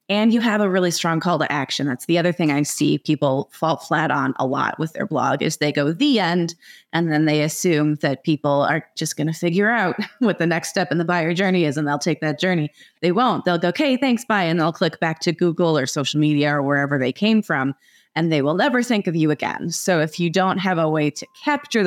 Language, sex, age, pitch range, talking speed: English, female, 30-49, 145-175 Hz, 255 wpm